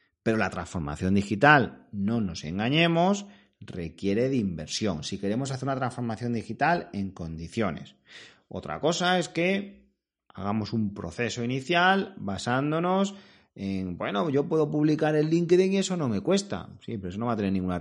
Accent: Spanish